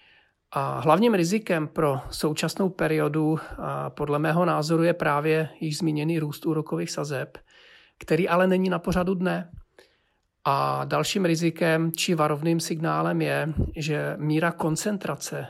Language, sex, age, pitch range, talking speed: Czech, male, 40-59, 150-165 Hz, 130 wpm